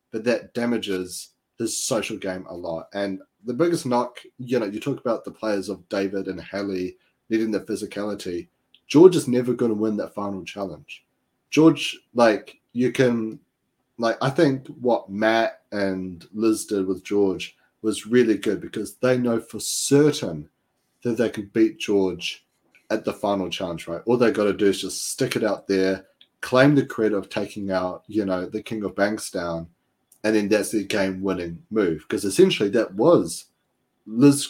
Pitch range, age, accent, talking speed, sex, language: 95-115 Hz, 30-49, Australian, 180 wpm, male, English